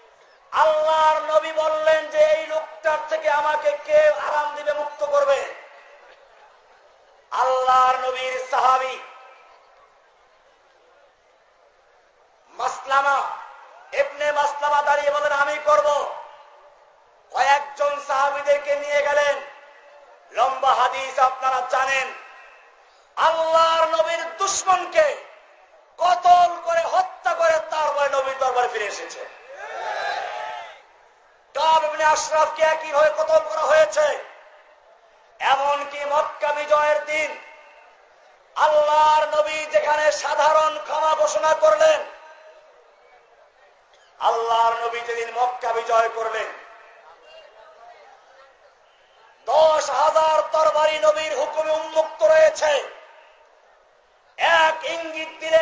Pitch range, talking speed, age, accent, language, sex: 280-315 Hz, 45 wpm, 50-69, native, Bengali, male